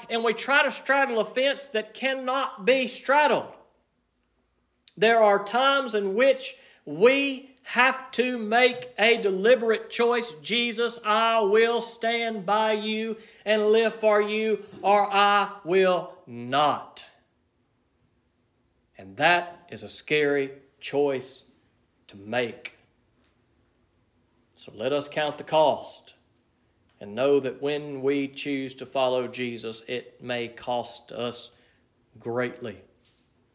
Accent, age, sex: American, 40-59, male